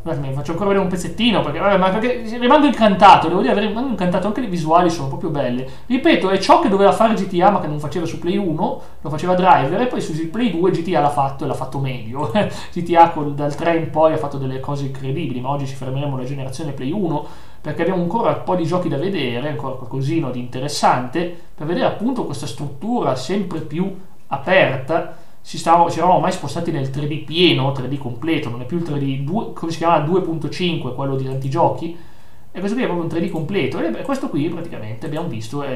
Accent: native